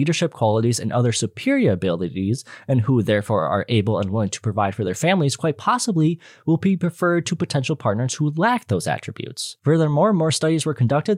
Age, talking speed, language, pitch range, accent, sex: 20-39, 190 wpm, English, 120-160 Hz, American, male